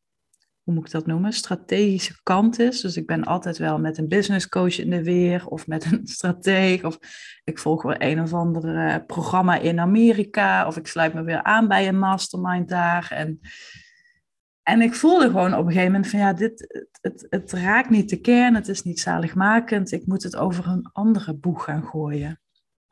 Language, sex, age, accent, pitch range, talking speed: Dutch, female, 30-49, Dutch, 175-210 Hz, 200 wpm